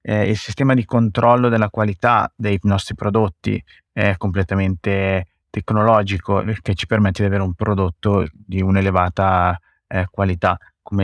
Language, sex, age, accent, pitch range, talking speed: Italian, male, 30-49, native, 100-110 Hz, 130 wpm